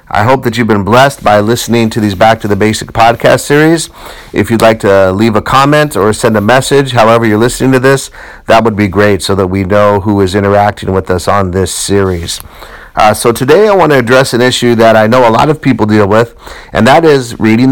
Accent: American